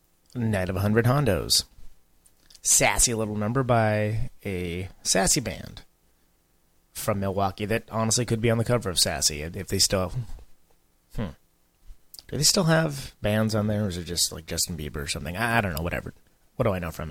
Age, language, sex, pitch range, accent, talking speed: 30-49, English, male, 85-115 Hz, American, 180 wpm